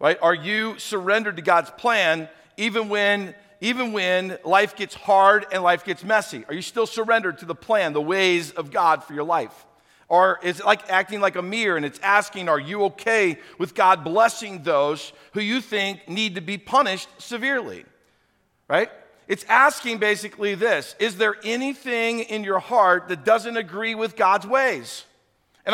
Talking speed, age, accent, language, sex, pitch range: 175 wpm, 50-69, American, English, male, 195-240 Hz